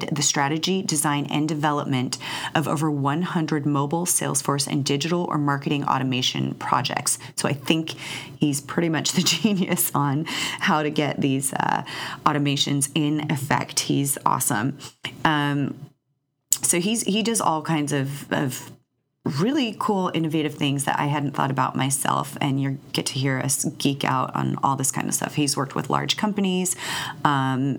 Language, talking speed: English, 160 wpm